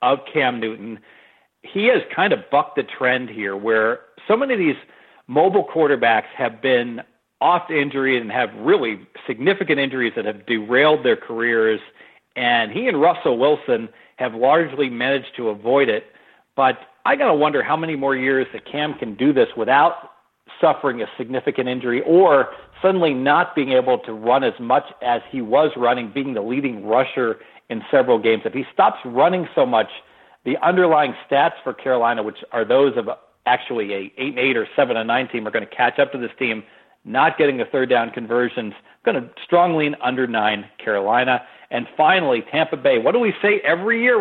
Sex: male